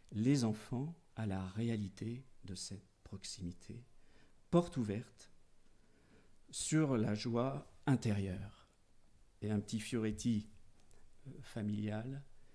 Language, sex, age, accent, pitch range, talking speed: French, male, 50-69, French, 105-120 Hz, 90 wpm